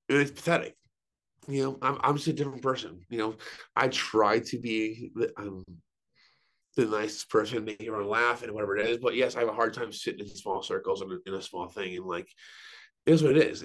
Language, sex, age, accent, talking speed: English, male, 30-49, American, 210 wpm